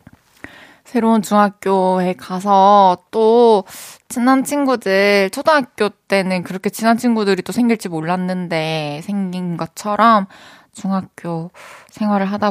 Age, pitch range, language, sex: 20-39, 180-245 Hz, Korean, female